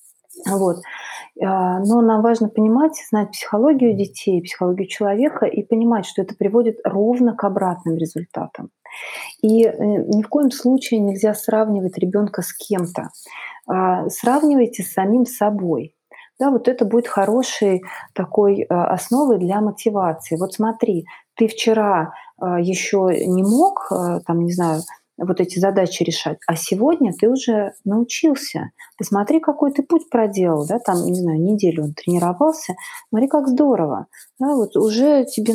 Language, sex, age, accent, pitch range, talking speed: Russian, female, 30-49, native, 185-245 Hz, 135 wpm